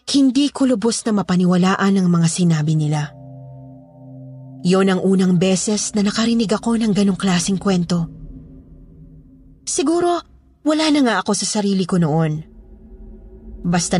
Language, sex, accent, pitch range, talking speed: Filipino, female, native, 150-195 Hz, 130 wpm